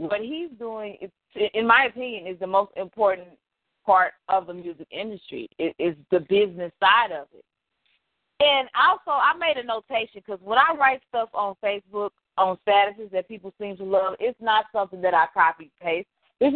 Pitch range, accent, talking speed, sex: 185-230 Hz, American, 180 wpm, female